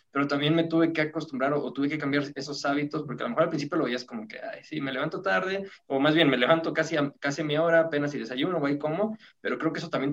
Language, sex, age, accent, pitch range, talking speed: Spanish, male, 20-39, Mexican, 130-155 Hz, 285 wpm